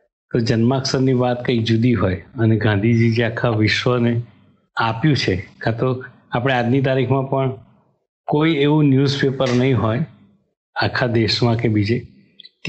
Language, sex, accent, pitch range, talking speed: English, male, Indian, 110-125 Hz, 90 wpm